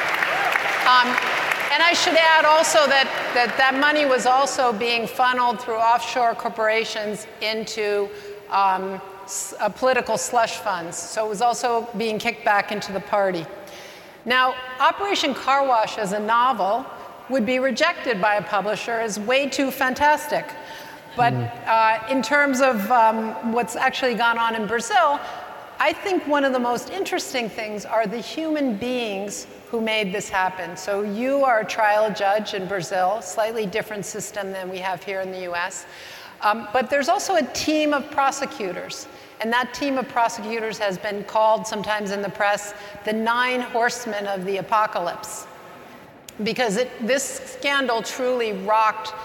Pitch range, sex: 205-255 Hz, female